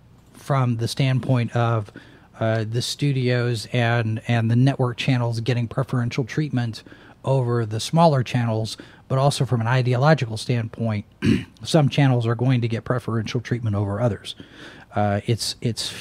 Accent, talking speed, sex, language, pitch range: American, 140 wpm, male, English, 115-145 Hz